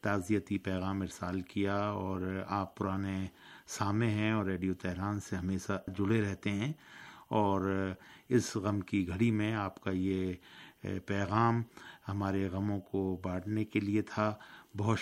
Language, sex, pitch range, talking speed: Urdu, male, 95-105 Hz, 140 wpm